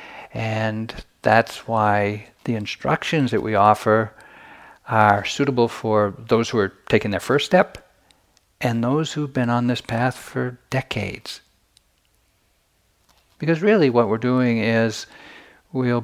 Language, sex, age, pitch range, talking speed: English, male, 60-79, 95-125 Hz, 130 wpm